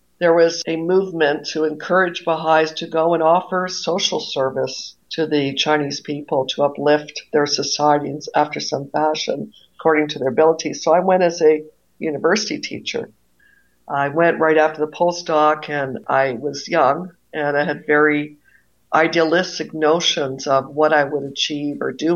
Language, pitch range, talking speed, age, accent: English, 145-165 Hz, 155 wpm, 60-79, American